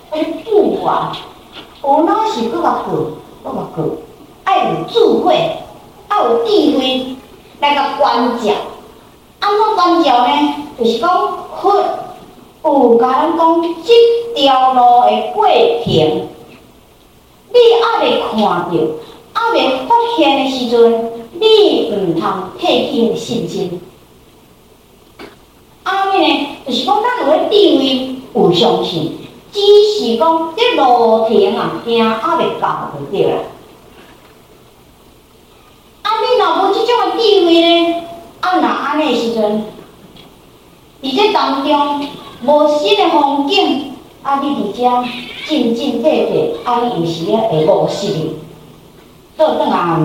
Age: 50-69